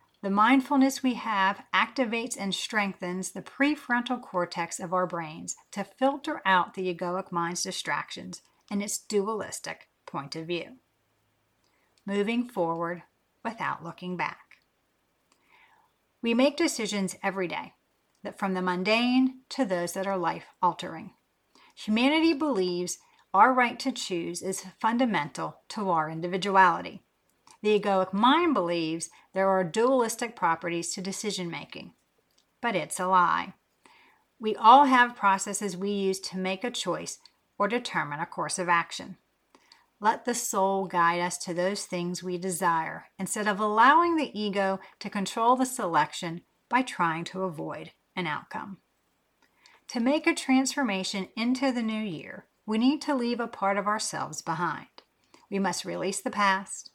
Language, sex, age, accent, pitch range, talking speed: English, female, 40-59, American, 180-240 Hz, 140 wpm